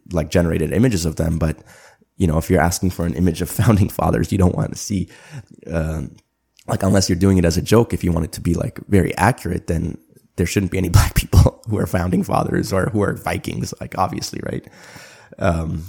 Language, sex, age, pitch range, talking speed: English, male, 20-39, 80-100 Hz, 225 wpm